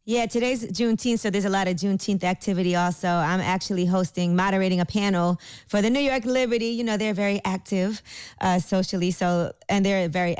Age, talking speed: 20-39, 190 wpm